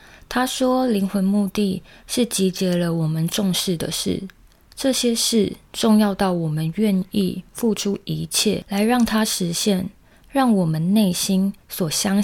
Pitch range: 175-210 Hz